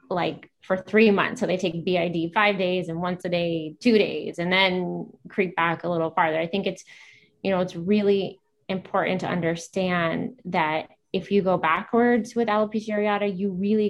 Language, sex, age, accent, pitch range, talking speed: English, female, 20-39, American, 165-205 Hz, 185 wpm